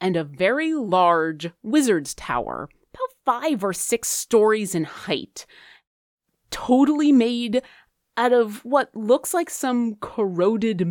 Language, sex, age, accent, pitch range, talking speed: English, female, 30-49, American, 175-260 Hz, 120 wpm